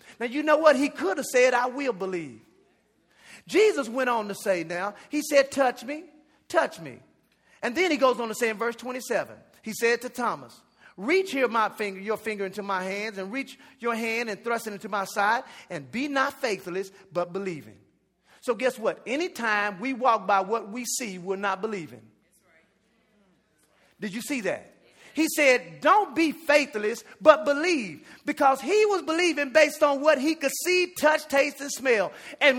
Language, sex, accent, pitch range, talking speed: English, male, American, 200-295 Hz, 185 wpm